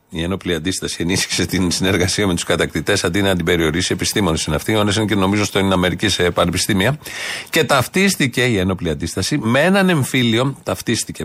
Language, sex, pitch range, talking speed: Greek, male, 110-145 Hz, 175 wpm